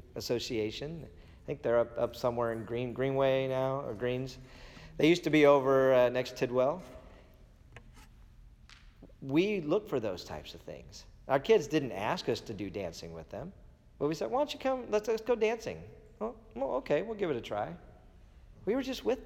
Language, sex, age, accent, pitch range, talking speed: English, male, 40-59, American, 115-155 Hz, 195 wpm